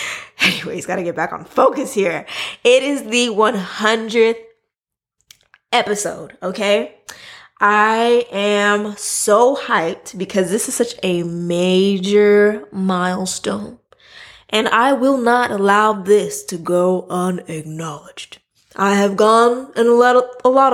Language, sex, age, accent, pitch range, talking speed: English, female, 20-39, American, 185-250 Hz, 115 wpm